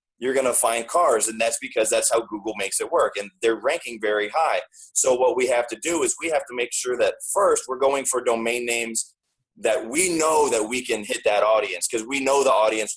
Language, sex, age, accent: English, male, 30-49, American